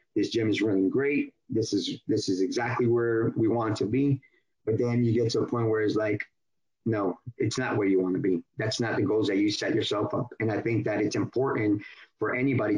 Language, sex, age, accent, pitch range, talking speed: English, male, 30-49, American, 110-125 Hz, 240 wpm